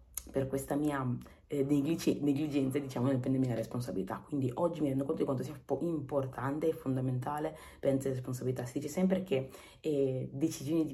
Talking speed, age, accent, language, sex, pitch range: 175 wpm, 30-49, native, Italian, female, 135-165 Hz